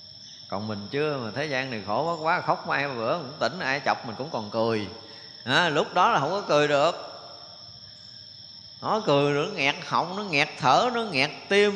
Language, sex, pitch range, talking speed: Vietnamese, male, 115-180 Hz, 220 wpm